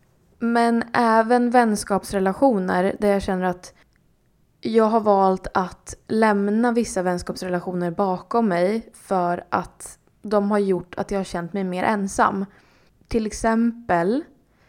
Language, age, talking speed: Swedish, 20-39, 125 wpm